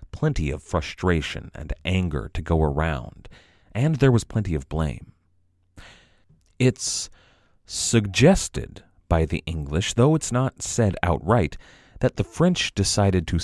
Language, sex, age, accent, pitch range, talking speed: English, male, 40-59, American, 80-105 Hz, 130 wpm